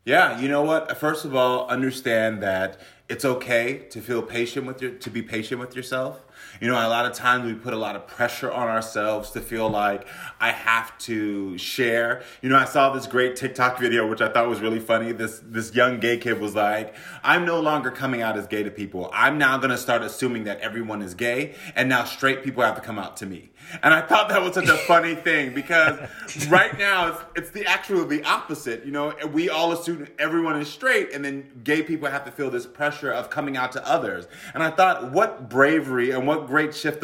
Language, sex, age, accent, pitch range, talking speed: English, male, 30-49, American, 115-150 Hz, 225 wpm